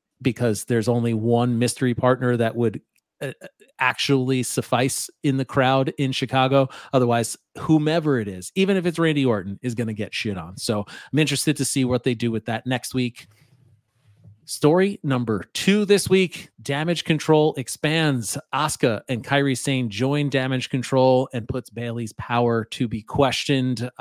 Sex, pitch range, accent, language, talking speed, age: male, 115-140 Hz, American, English, 160 wpm, 30-49